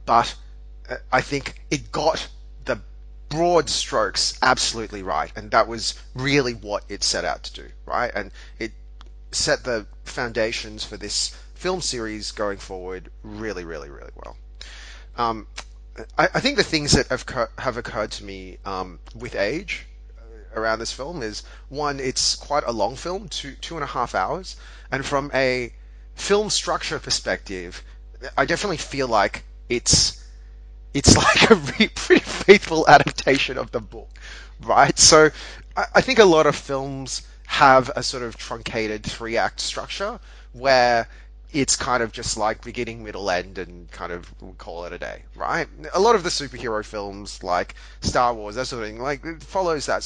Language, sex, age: English, male, 30-49